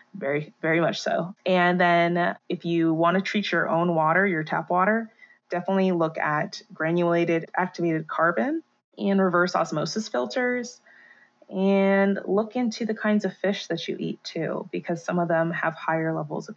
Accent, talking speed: American, 165 wpm